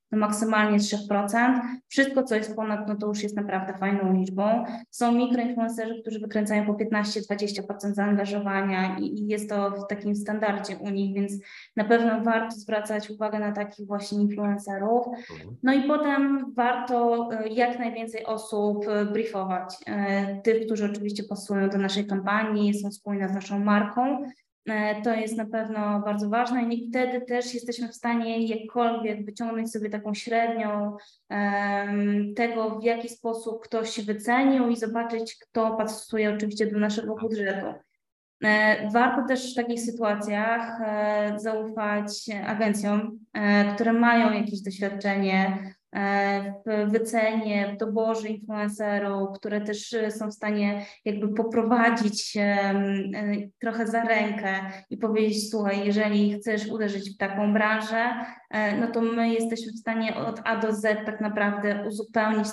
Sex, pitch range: female, 205-225 Hz